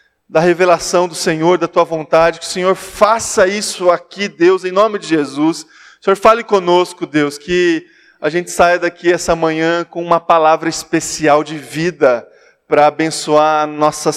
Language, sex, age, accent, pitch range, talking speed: Portuguese, male, 20-39, Brazilian, 155-200 Hz, 170 wpm